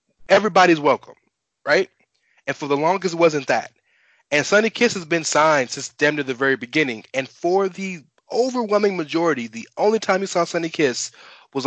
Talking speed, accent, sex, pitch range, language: 180 wpm, American, male, 130-165 Hz, English